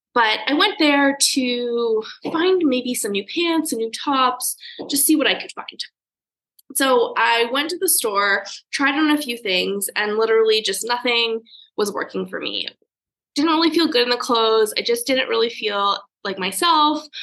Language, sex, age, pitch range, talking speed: English, female, 20-39, 225-300 Hz, 180 wpm